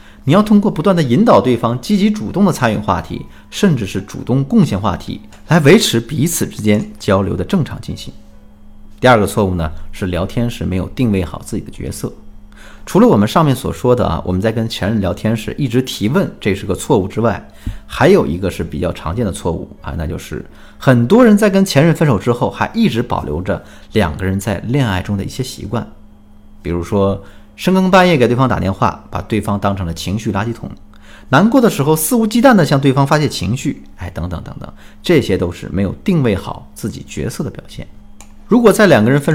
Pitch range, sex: 95-135 Hz, male